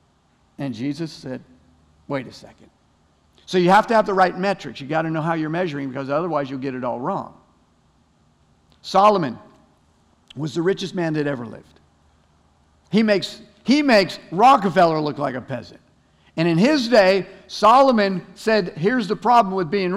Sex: male